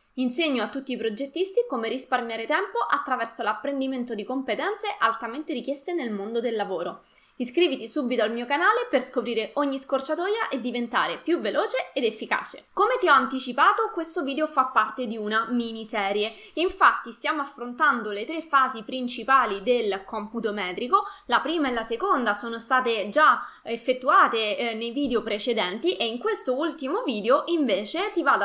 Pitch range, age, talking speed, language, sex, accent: 225-300 Hz, 20-39, 155 wpm, Italian, female, native